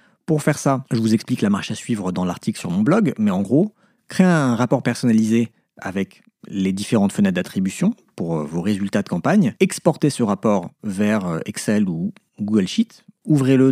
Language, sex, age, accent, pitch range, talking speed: French, male, 40-59, French, 120-190 Hz, 180 wpm